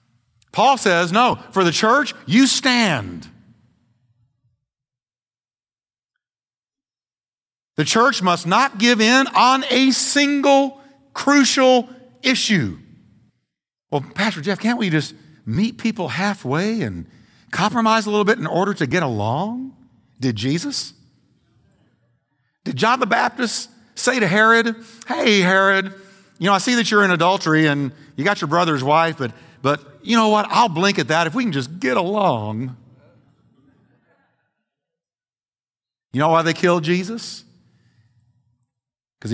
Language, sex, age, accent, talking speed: English, male, 50-69, American, 130 wpm